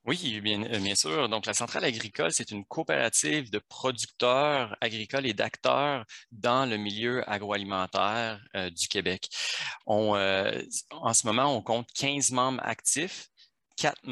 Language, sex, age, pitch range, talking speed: French, male, 30-49, 95-120 Hz, 145 wpm